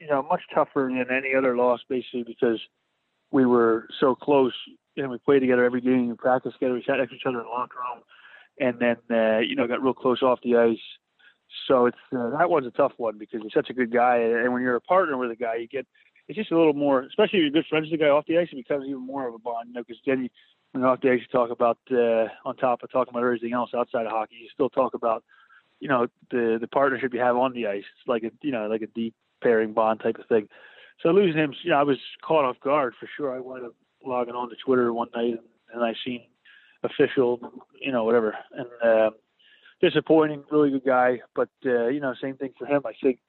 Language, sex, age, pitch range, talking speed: English, male, 20-39, 115-135 Hz, 270 wpm